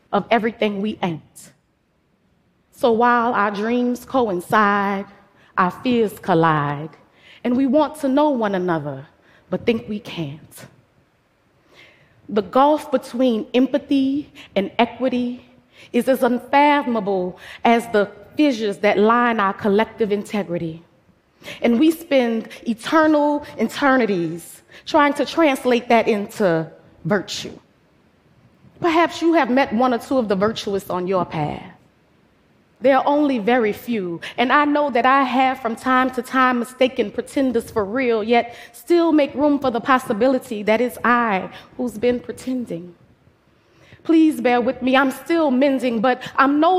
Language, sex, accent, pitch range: Korean, female, American, 210-270 Hz